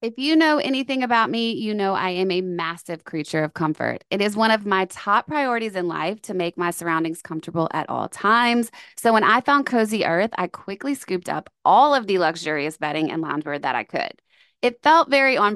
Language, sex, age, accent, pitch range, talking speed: English, female, 20-39, American, 175-235 Hz, 215 wpm